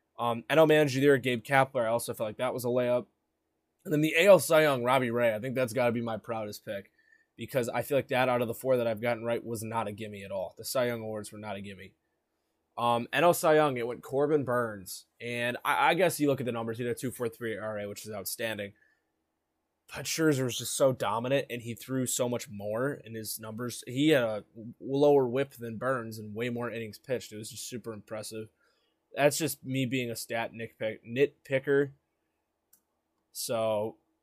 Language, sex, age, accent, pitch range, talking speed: English, male, 20-39, American, 110-135 Hz, 225 wpm